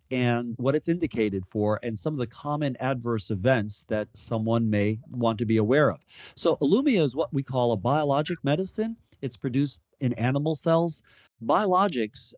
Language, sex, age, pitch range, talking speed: English, male, 40-59, 115-145 Hz, 170 wpm